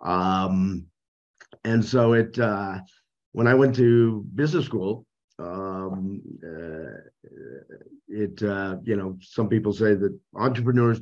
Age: 50-69